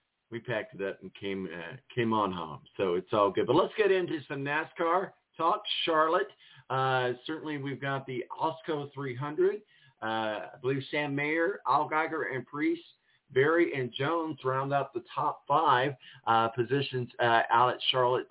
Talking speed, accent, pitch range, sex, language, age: 170 wpm, American, 125-160 Hz, male, English, 50-69